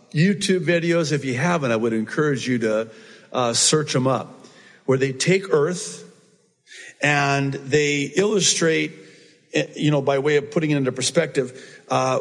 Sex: male